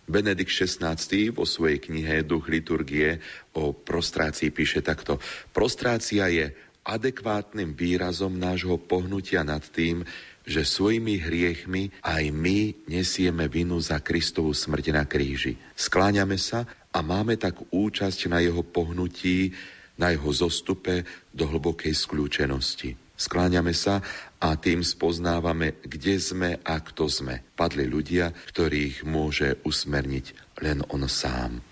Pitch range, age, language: 70-90 Hz, 40-59, Slovak